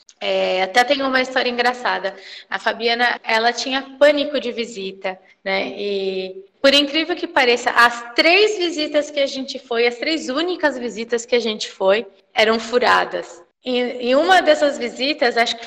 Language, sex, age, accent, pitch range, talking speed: Portuguese, female, 20-39, Brazilian, 220-265 Hz, 165 wpm